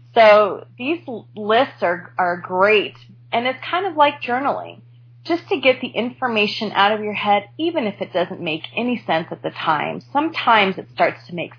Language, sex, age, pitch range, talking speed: English, female, 20-39, 175-230 Hz, 185 wpm